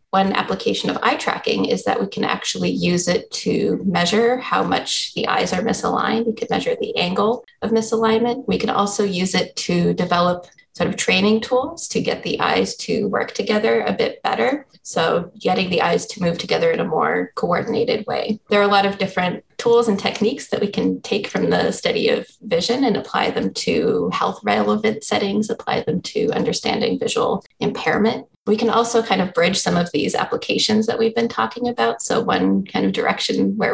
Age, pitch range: 20-39, 180-240 Hz